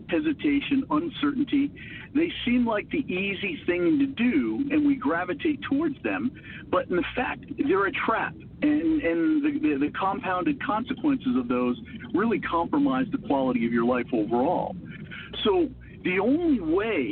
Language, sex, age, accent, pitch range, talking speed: English, male, 50-69, American, 245-315 Hz, 145 wpm